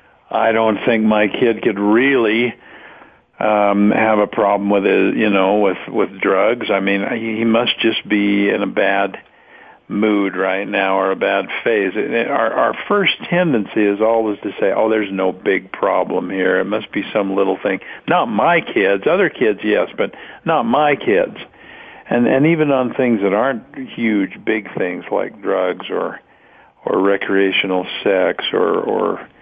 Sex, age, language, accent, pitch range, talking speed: male, 50-69, English, American, 100-120 Hz, 175 wpm